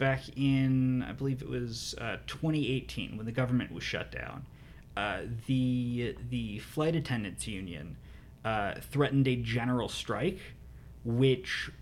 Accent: American